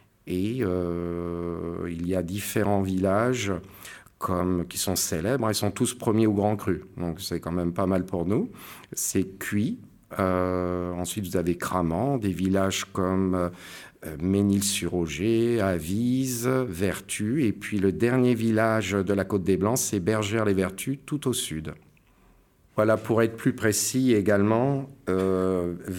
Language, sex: French, male